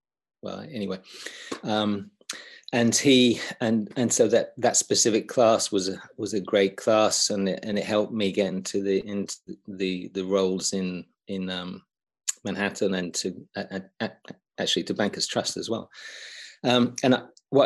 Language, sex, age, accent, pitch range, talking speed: English, male, 30-49, British, 95-110 Hz, 165 wpm